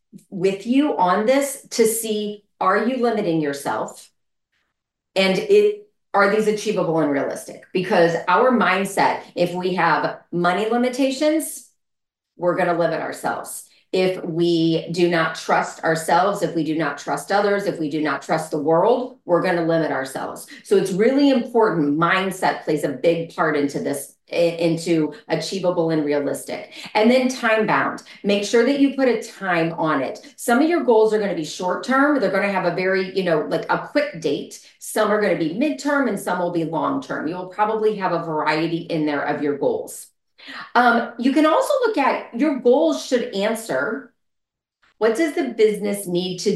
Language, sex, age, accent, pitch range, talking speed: English, female, 30-49, American, 160-230 Hz, 185 wpm